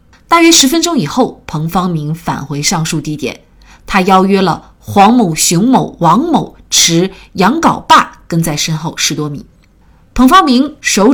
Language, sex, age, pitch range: Chinese, female, 30-49, 165-250 Hz